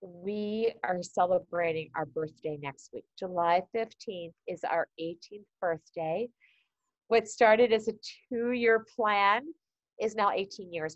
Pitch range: 165-215 Hz